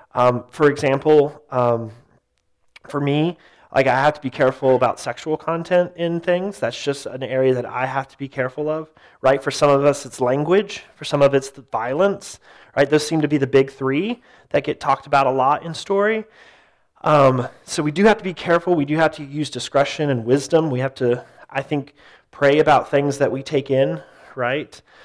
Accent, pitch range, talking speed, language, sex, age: American, 130-155 Hz, 205 wpm, English, male, 30-49